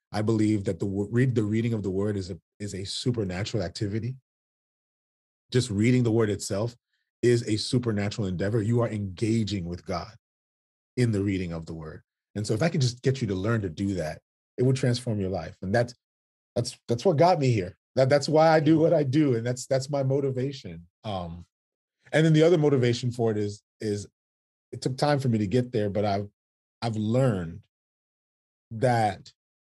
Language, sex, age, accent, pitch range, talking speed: English, male, 30-49, American, 95-130 Hz, 195 wpm